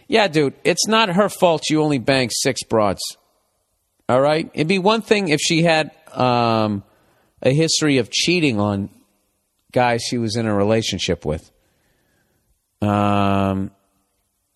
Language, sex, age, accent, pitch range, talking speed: English, male, 40-59, American, 110-170 Hz, 140 wpm